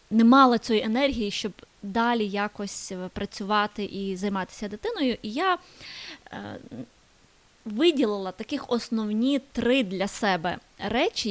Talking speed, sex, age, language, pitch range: 110 wpm, female, 20-39, Ukrainian, 210-255 Hz